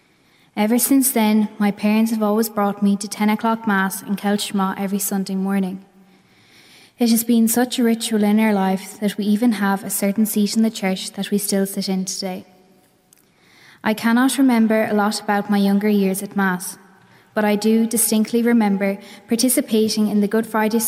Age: 10-29